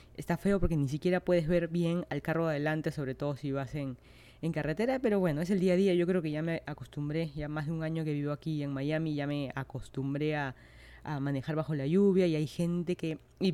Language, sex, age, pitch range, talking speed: Spanish, female, 20-39, 145-185 Hz, 245 wpm